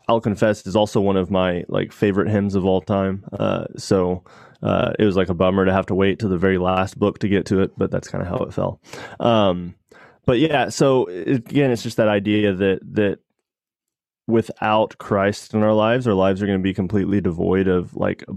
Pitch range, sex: 95-110 Hz, male